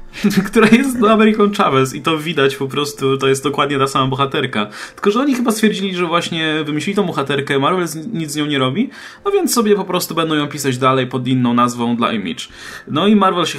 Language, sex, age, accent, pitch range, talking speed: Polish, male, 20-39, native, 115-155 Hz, 220 wpm